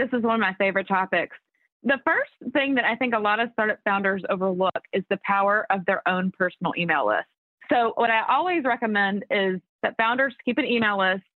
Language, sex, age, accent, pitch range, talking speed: English, female, 30-49, American, 195-240 Hz, 210 wpm